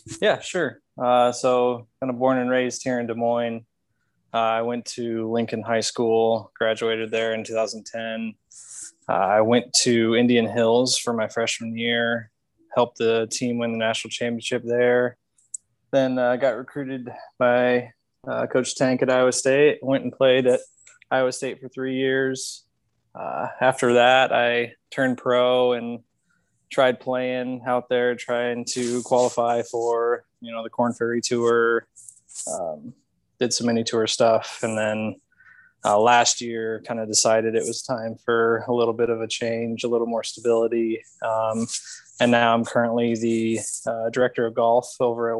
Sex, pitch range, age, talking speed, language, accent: male, 115-125 Hz, 20-39, 160 wpm, English, American